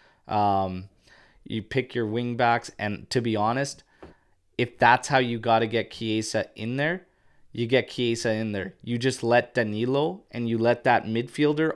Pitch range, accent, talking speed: 110-130 Hz, American, 175 wpm